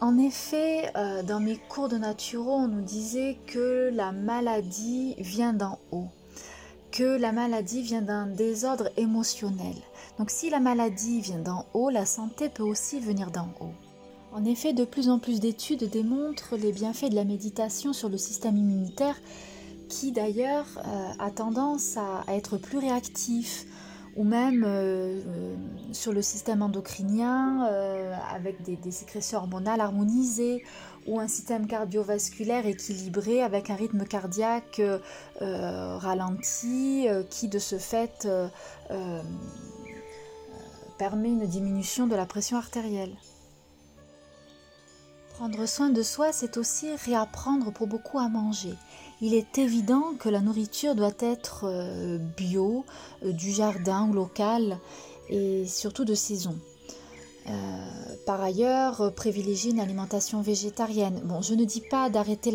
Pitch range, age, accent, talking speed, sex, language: 195-235 Hz, 30-49, French, 135 wpm, female, French